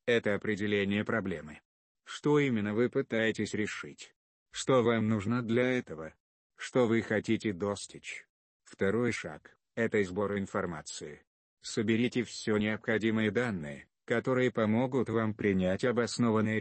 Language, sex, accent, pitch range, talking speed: Russian, male, native, 100-115 Hz, 110 wpm